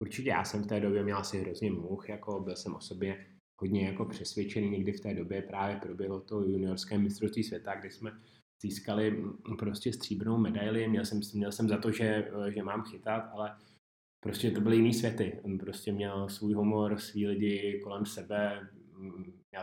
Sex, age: male, 20-39